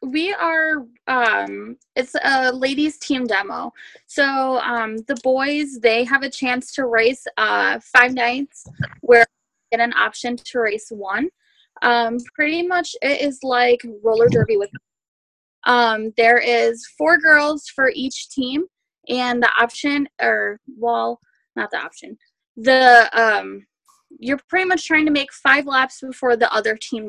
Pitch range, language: 230-285 Hz, English